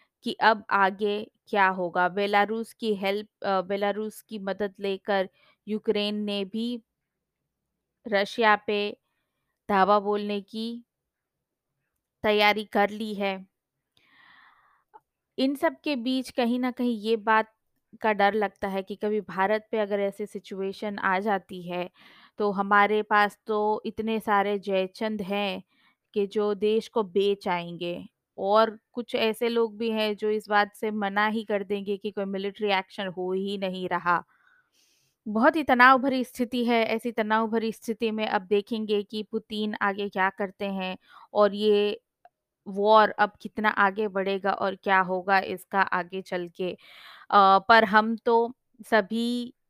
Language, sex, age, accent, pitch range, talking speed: Hindi, female, 20-39, native, 195-225 Hz, 145 wpm